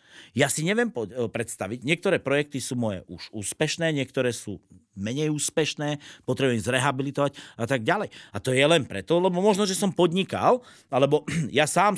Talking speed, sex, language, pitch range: 160 wpm, male, Slovak, 125-205 Hz